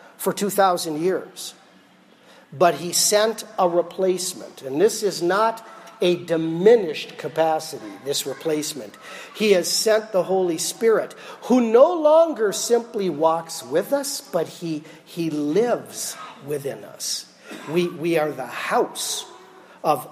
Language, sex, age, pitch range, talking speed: English, male, 50-69, 160-215 Hz, 125 wpm